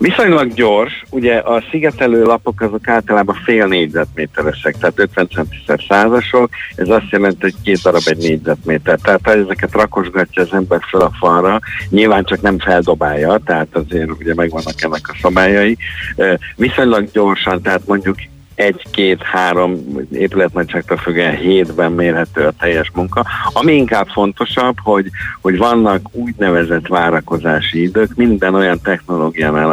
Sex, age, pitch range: male, 60-79, 85-100 Hz